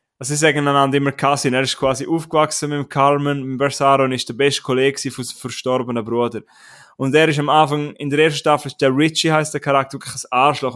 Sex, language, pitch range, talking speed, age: male, German, 135-155 Hz, 220 wpm, 20-39